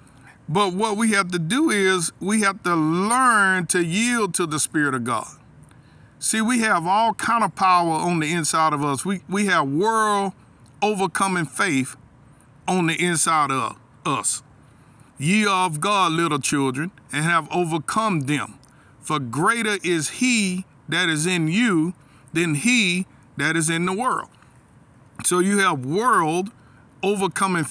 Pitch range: 140-190 Hz